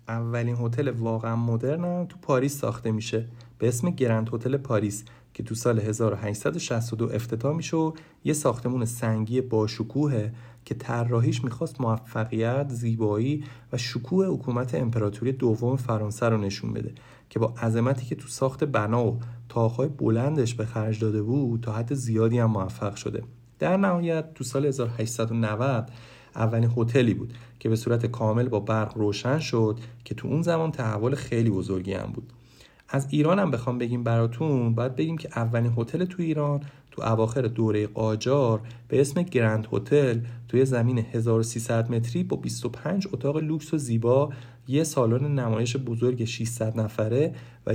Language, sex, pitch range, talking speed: Persian, male, 115-140 Hz, 150 wpm